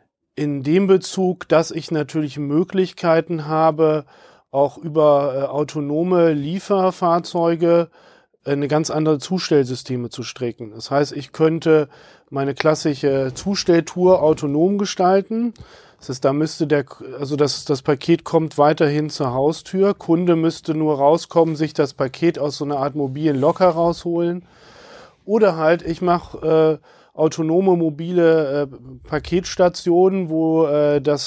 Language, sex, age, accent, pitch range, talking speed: German, male, 40-59, German, 145-170 Hz, 130 wpm